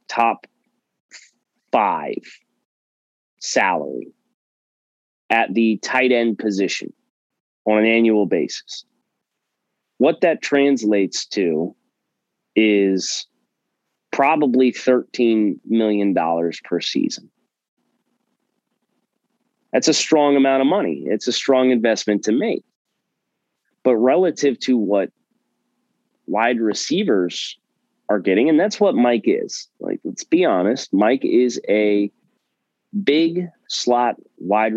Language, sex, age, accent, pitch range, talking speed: English, male, 30-49, American, 105-130 Hz, 100 wpm